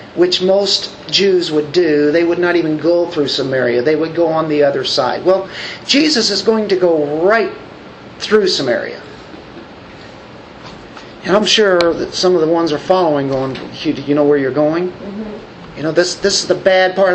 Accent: American